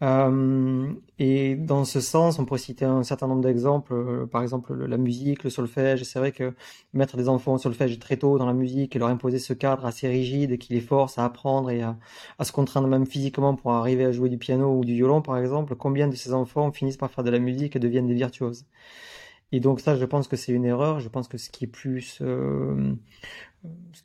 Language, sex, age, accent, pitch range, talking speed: French, male, 30-49, French, 120-135 Hz, 230 wpm